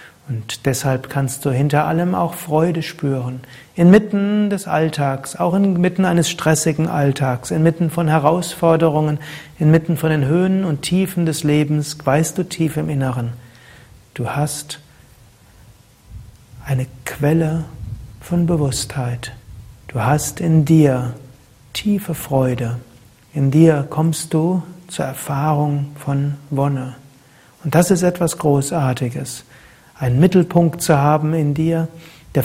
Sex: male